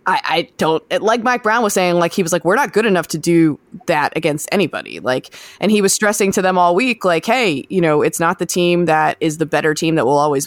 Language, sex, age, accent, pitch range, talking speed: English, female, 20-39, American, 165-225 Hz, 270 wpm